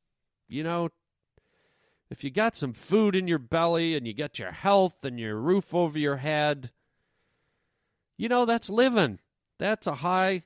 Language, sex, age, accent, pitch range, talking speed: English, male, 40-59, American, 125-165 Hz, 160 wpm